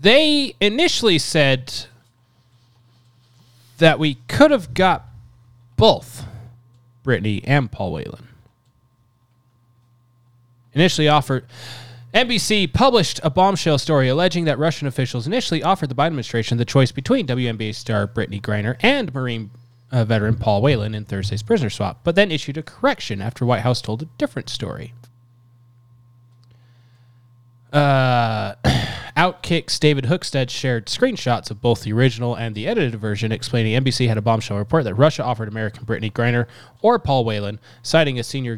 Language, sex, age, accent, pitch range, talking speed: English, male, 20-39, American, 115-140 Hz, 140 wpm